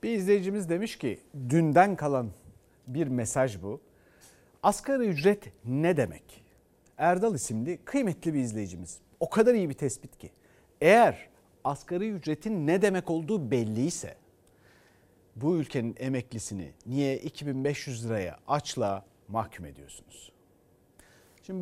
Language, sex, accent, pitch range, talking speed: Turkish, male, native, 120-185 Hz, 115 wpm